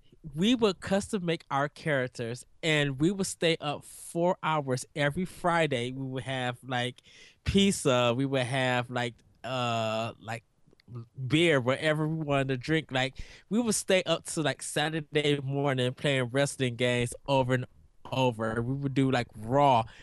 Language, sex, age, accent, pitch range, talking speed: English, male, 20-39, American, 125-155 Hz, 155 wpm